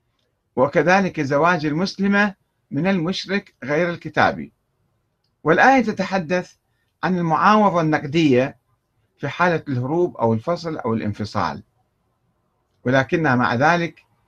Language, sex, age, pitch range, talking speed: Arabic, male, 50-69, 115-170 Hz, 95 wpm